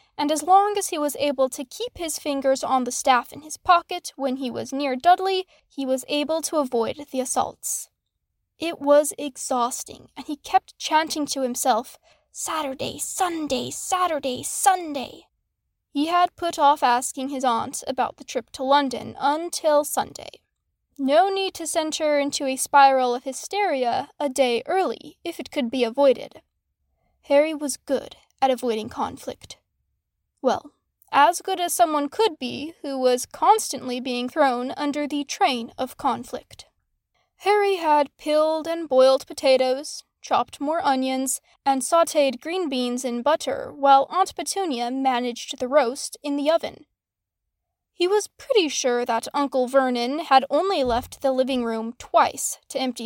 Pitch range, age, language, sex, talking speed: 260-320 Hz, 10-29, English, female, 155 wpm